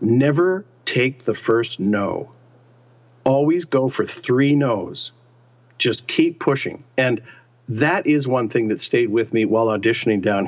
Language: English